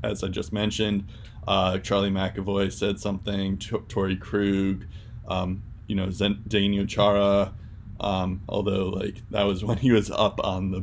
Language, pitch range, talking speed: English, 100-115 Hz, 160 wpm